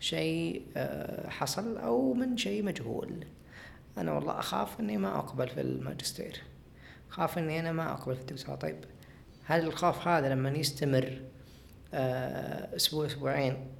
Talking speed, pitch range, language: 125 wpm, 130-155 Hz, Arabic